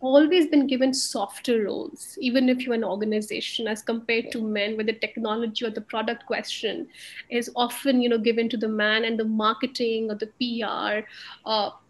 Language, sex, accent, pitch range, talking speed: English, female, Indian, 225-260 Hz, 180 wpm